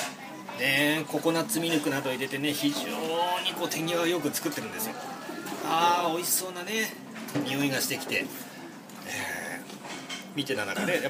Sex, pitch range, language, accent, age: male, 165-270 Hz, Japanese, native, 40-59